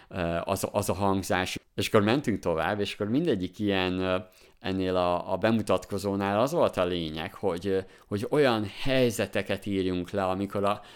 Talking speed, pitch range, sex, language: 155 wpm, 90-110 Hz, male, Hungarian